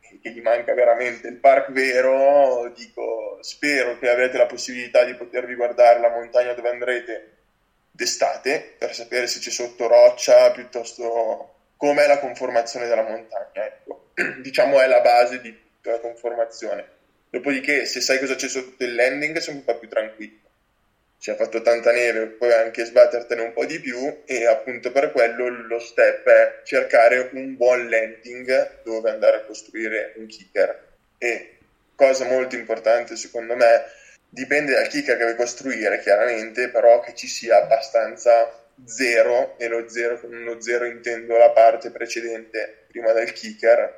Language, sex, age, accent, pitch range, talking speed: Italian, male, 20-39, native, 115-130 Hz, 155 wpm